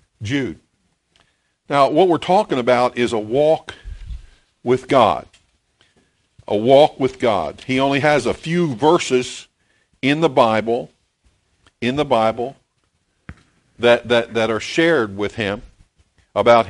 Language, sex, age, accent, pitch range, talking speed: English, male, 50-69, American, 110-140 Hz, 125 wpm